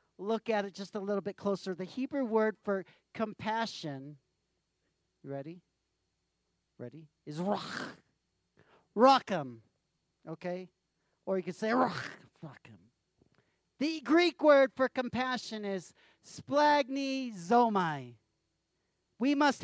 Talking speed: 105 wpm